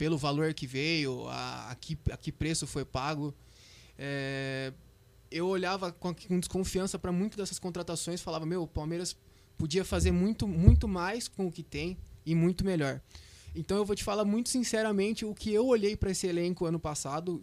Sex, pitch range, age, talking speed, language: male, 145-190 Hz, 20-39, 185 wpm, Portuguese